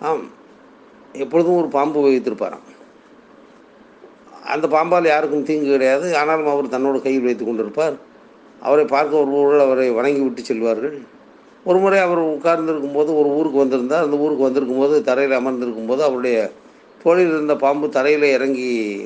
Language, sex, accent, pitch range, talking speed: Tamil, male, native, 130-160 Hz, 135 wpm